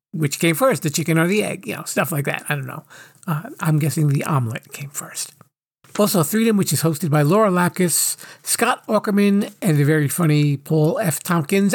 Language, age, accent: English, 50-69, American